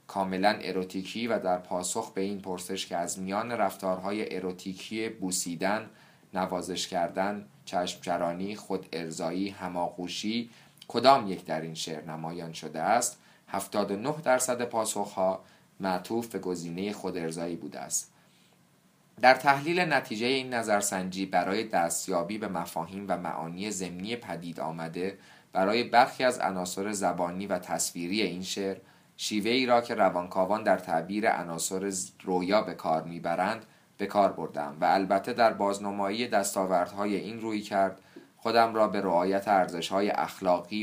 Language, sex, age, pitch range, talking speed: Persian, male, 30-49, 90-105 Hz, 130 wpm